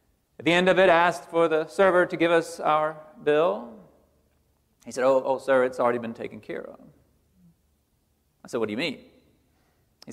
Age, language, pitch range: 40-59, English, 135-185 Hz